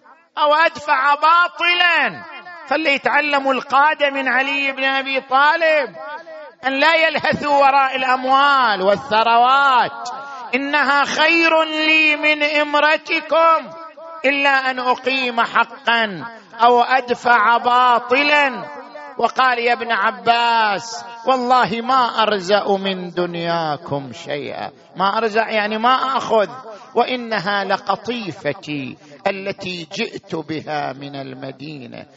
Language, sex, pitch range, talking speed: Arabic, male, 205-280 Hz, 95 wpm